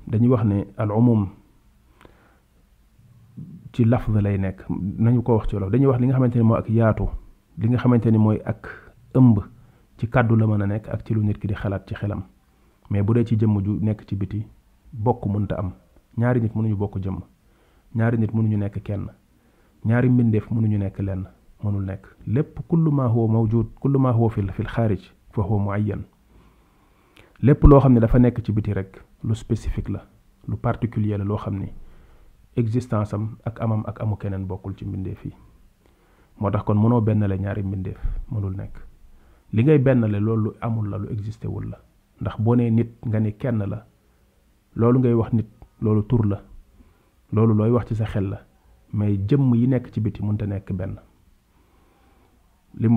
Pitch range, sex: 100-115 Hz, male